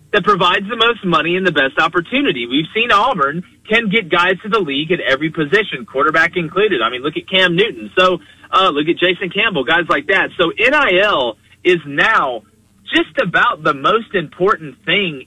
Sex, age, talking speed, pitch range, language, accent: male, 30-49, 190 wpm, 165-230 Hz, English, American